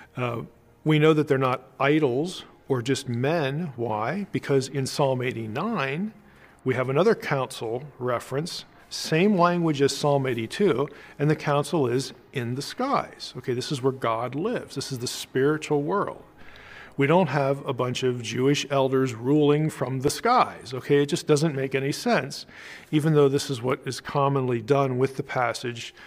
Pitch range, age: 125-145 Hz, 40-59